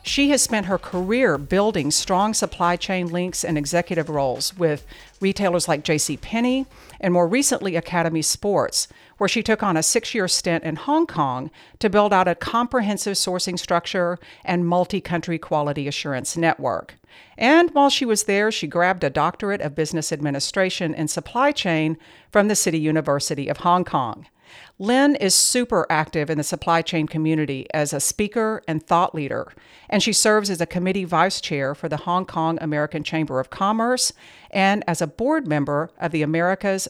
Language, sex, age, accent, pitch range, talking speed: English, female, 50-69, American, 155-205 Hz, 170 wpm